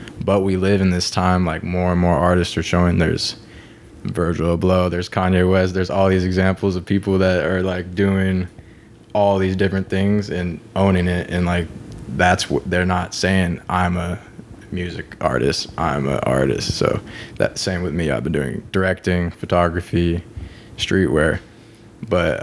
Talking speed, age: 165 wpm, 20-39